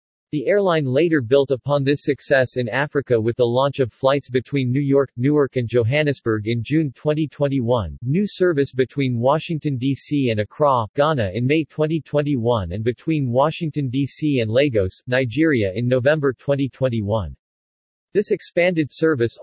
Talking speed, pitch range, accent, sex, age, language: 145 wpm, 120-150 Hz, American, male, 40-59, English